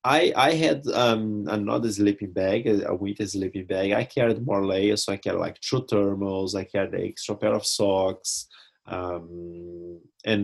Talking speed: 170 wpm